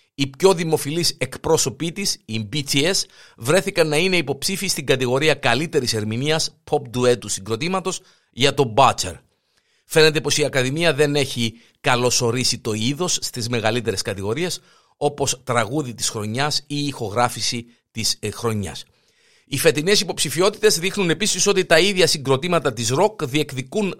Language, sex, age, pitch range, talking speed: Greek, male, 50-69, 125-165 Hz, 135 wpm